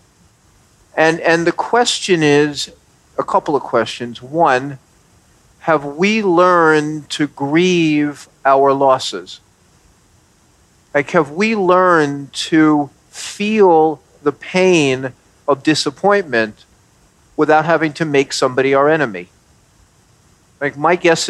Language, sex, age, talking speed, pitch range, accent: English, male, 50-69, 105 wpm, 135-165 Hz, American